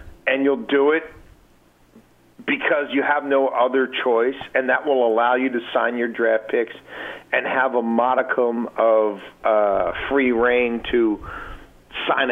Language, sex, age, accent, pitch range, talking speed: English, male, 50-69, American, 105-130 Hz, 145 wpm